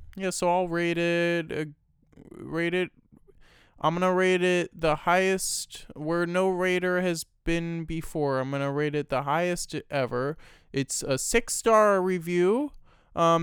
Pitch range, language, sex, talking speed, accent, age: 145-185 Hz, English, male, 150 wpm, American, 20-39